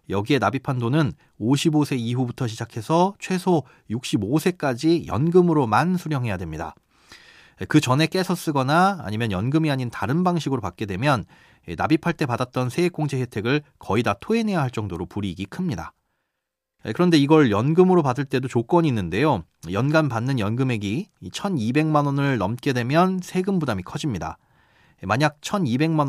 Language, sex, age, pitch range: Korean, male, 30-49, 115-165 Hz